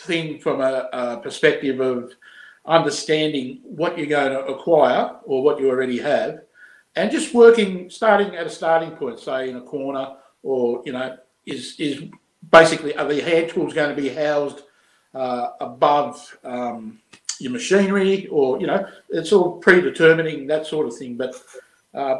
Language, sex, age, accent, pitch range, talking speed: English, male, 60-79, Australian, 135-190 Hz, 160 wpm